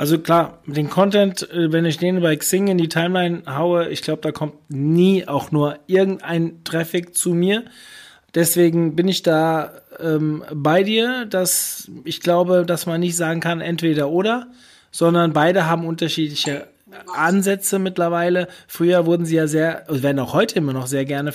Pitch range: 170-215 Hz